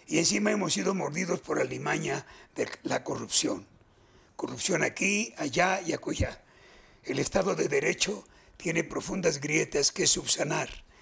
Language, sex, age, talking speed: Spanish, male, 60-79, 130 wpm